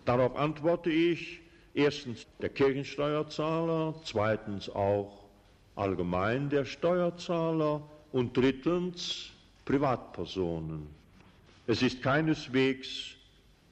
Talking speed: 75 wpm